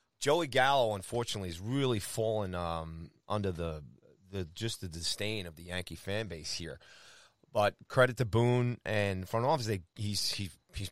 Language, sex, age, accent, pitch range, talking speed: English, male, 30-49, American, 100-130 Hz, 165 wpm